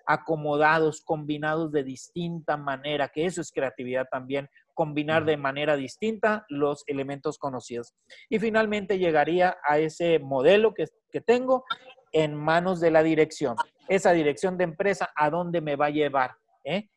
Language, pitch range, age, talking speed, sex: Spanish, 145-190 Hz, 40-59, 150 wpm, male